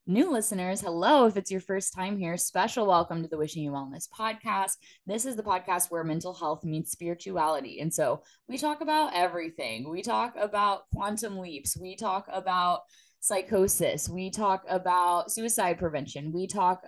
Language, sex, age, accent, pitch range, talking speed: English, female, 10-29, American, 170-205 Hz, 170 wpm